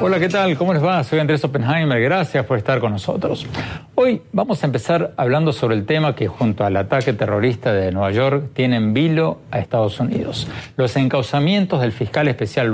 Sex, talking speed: male, 195 wpm